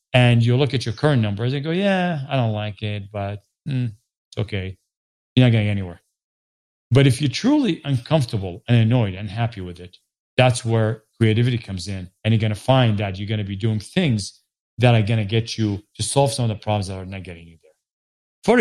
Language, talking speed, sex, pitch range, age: English, 220 wpm, male, 105-140 Hz, 40-59